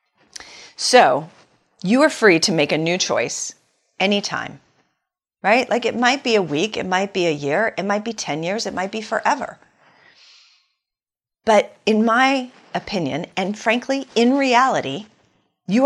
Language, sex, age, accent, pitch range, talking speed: English, female, 40-59, American, 170-240 Hz, 150 wpm